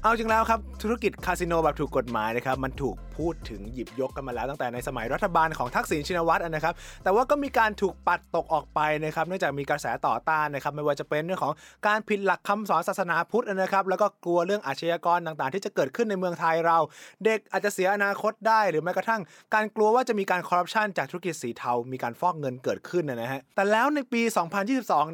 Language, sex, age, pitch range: Thai, male, 20-39, 150-205 Hz